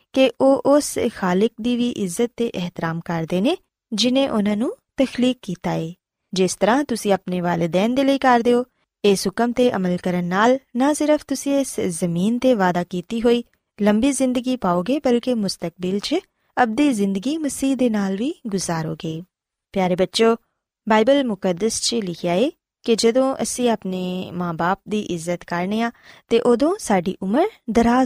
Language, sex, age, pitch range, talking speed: Punjabi, female, 20-39, 185-250 Hz, 125 wpm